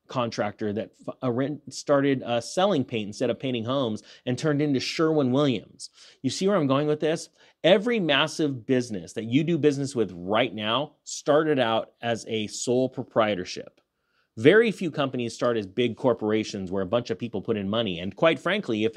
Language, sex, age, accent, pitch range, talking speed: English, male, 30-49, American, 120-170 Hz, 175 wpm